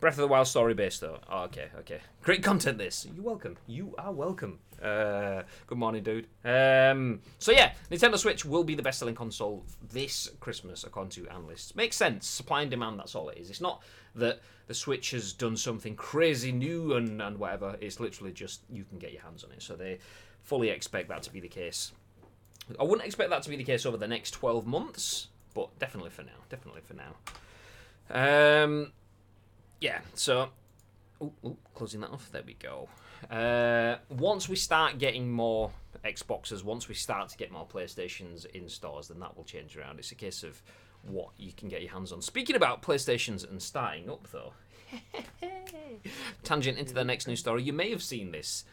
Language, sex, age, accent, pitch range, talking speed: English, male, 30-49, British, 100-135 Hz, 195 wpm